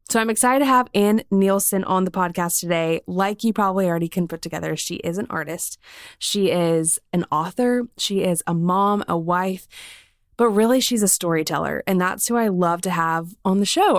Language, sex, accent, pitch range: English, female, American, 175-215 Hz